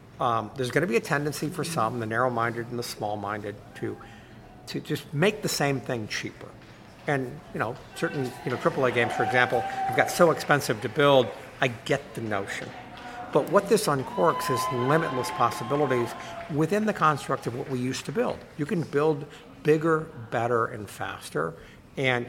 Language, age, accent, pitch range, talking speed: English, 50-69, American, 120-150 Hz, 180 wpm